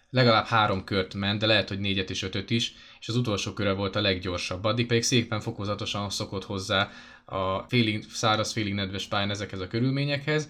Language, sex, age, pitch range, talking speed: English, male, 20-39, 100-125 Hz, 185 wpm